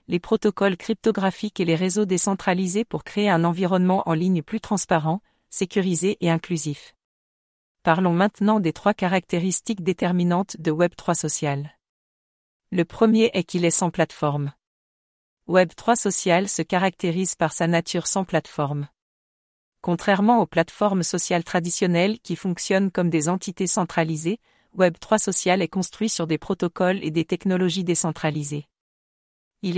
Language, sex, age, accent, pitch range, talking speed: English, female, 50-69, French, 165-195 Hz, 135 wpm